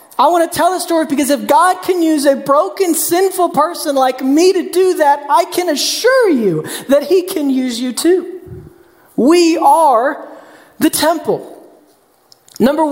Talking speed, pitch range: 165 wpm, 215-325 Hz